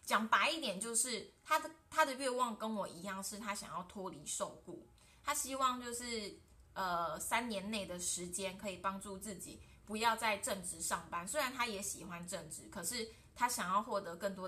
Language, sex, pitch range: Chinese, female, 185-245 Hz